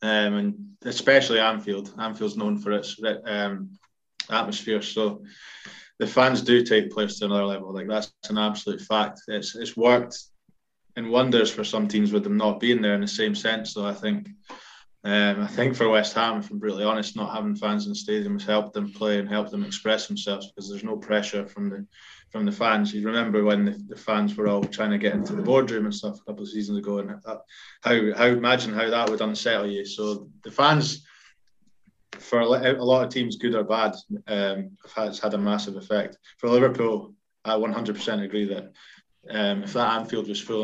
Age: 20-39